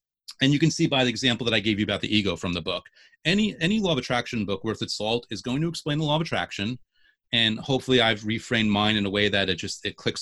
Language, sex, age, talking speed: English, male, 30-49, 275 wpm